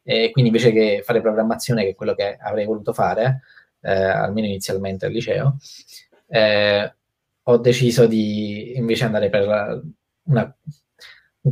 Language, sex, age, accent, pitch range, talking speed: Italian, male, 20-39, native, 100-135 Hz, 140 wpm